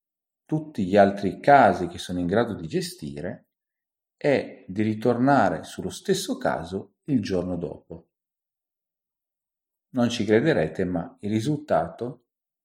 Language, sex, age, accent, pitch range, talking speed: Italian, male, 40-59, native, 95-150 Hz, 120 wpm